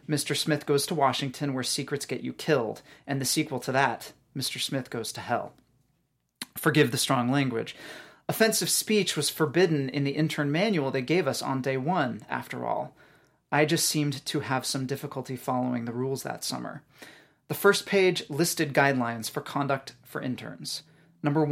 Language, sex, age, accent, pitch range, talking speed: English, male, 30-49, American, 130-150 Hz, 175 wpm